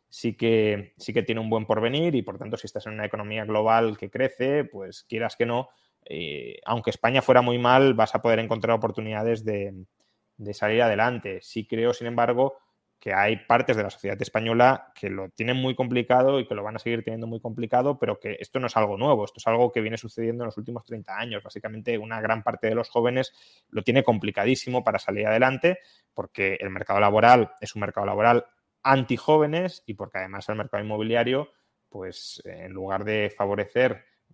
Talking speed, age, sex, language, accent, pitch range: 195 wpm, 20-39, male, Spanish, Spanish, 105-125 Hz